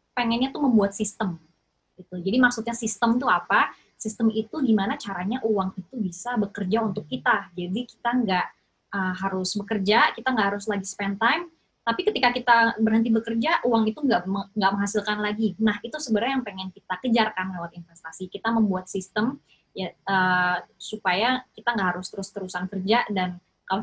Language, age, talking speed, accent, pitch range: Indonesian, 20-39, 165 wpm, native, 195-240 Hz